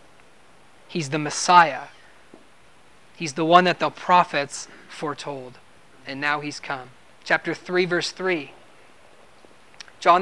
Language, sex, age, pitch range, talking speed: English, male, 30-49, 160-185 Hz, 110 wpm